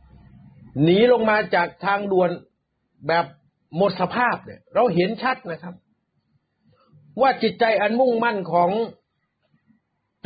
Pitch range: 170-225 Hz